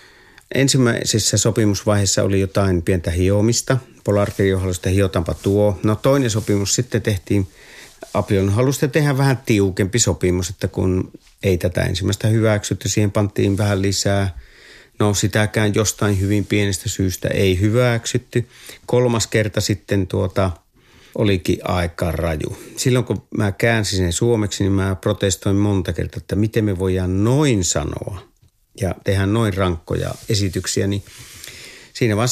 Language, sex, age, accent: Finnish, male, 50-69, native